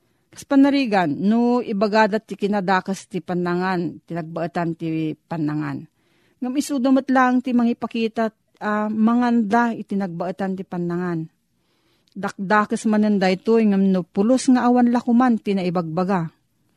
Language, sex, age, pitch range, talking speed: Filipino, female, 40-59, 180-235 Hz, 120 wpm